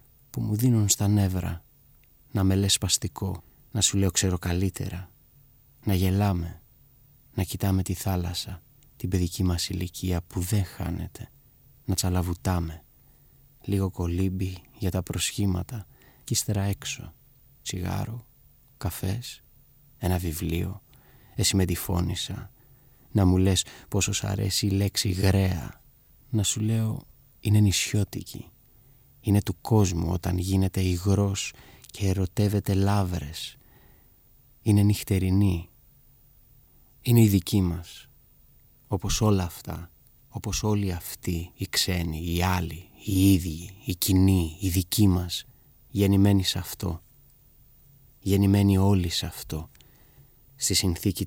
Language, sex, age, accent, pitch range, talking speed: Greek, male, 30-49, native, 90-110 Hz, 115 wpm